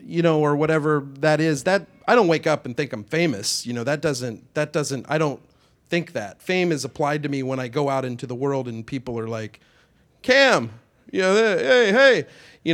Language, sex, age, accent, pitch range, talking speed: English, male, 40-59, American, 125-155 Hz, 215 wpm